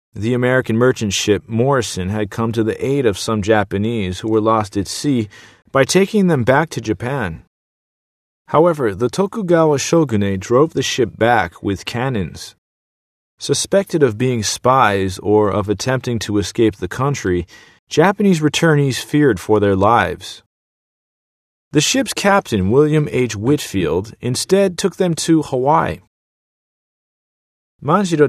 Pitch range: 105-150 Hz